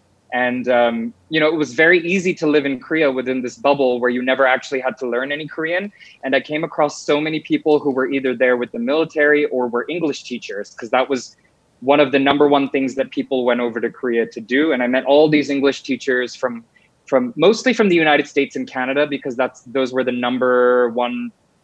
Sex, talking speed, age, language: male, 225 wpm, 20-39, English